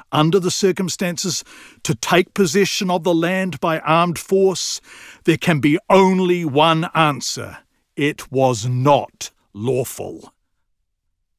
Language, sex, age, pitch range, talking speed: English, male, 50-69, 115-155 Hz, 115 wpm